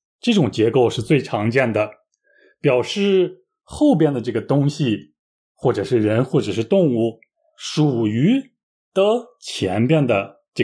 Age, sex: 20-39, male